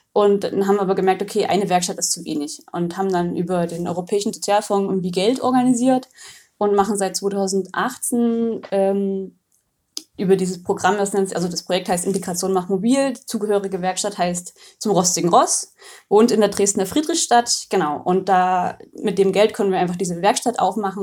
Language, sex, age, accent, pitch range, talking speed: German, female, 20-39, German, 180-210 Hz, 175 wpm